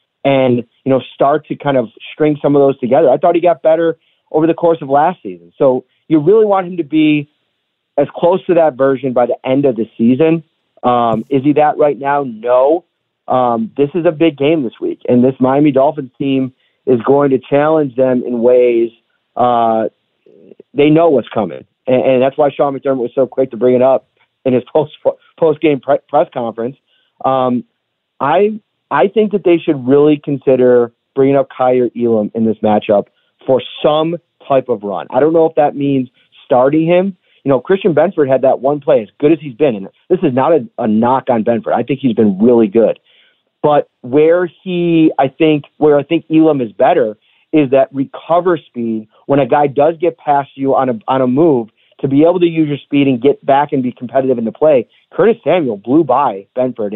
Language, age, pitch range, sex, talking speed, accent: English, 40-59, 125-160 Hz, male, 210 wpm, American